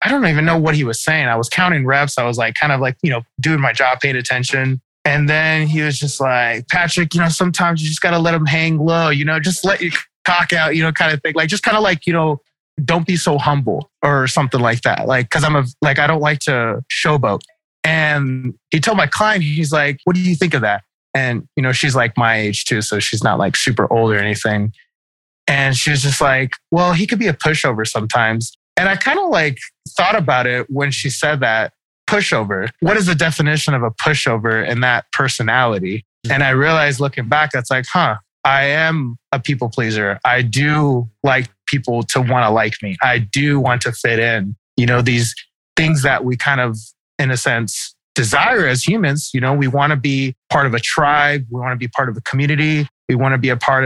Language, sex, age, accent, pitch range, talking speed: English, male, 20-39, American, 125-155 Hz, 235 wpm